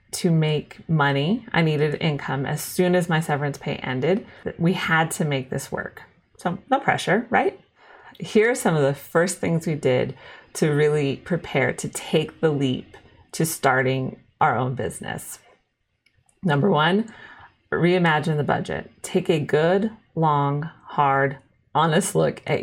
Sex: female